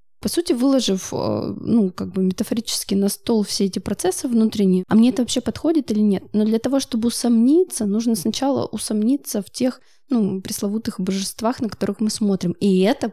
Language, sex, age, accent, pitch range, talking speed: Russian, female, 20-39, native, 205-245 Hz, 180 wpm